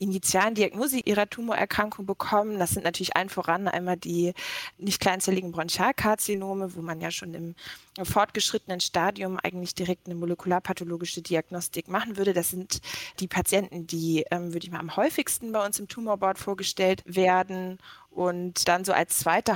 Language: German